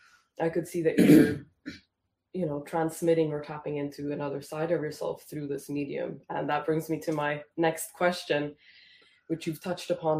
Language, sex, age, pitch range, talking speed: English, female, 20-39, 145-170 Hz, 175 wpm